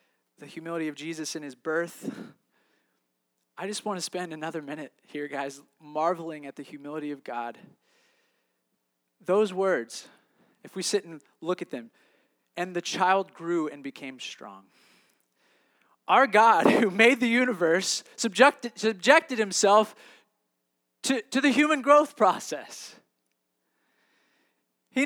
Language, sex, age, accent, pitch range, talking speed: English, male, 20-39, American, 155-255 Hz, 130 wpm